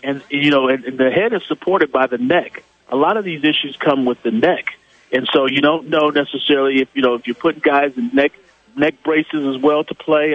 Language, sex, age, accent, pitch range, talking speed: English, male, 40-59, American, 130-155 Hz, 245 wpm